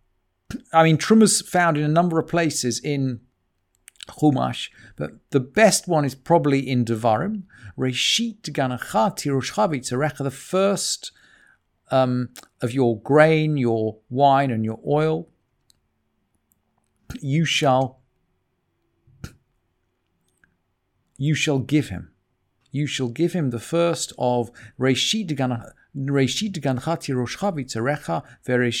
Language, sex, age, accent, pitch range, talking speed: English, male, 50-69, British, 120-165 Hz, 105 wpm